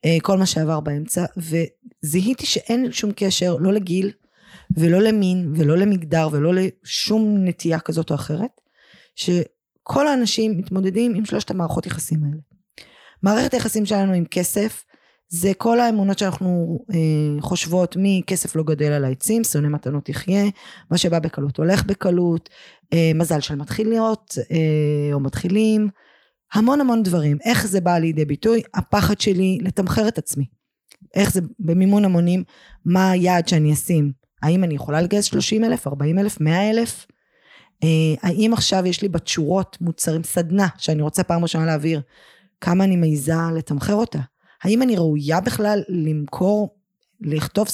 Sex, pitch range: female, 155-200 Hz